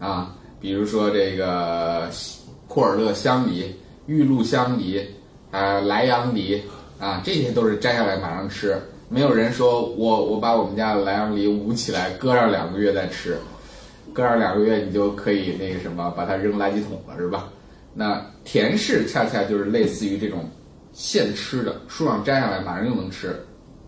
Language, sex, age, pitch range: Chinese, male, 20-39, 95-125 Hz